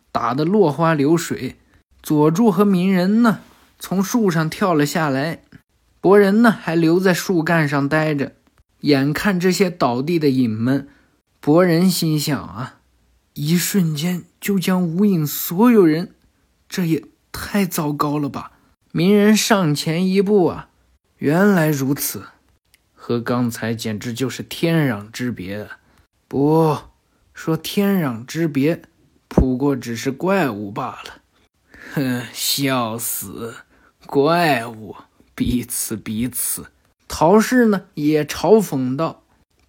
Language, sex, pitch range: Chinese, male, 140-195 Hz